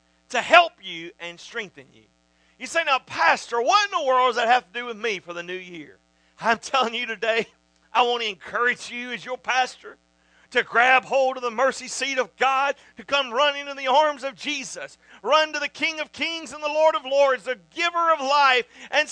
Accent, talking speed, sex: American, 220 wpm, male